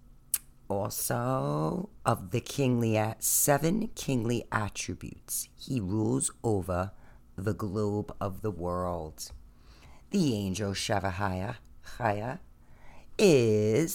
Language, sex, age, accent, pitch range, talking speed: English, female, 40-59, American, 95-120 Hz, 85 wpm